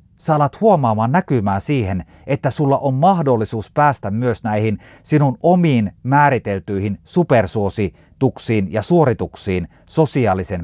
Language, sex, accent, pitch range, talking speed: Finnish, male, native, 100-145 Hz, 105 wpm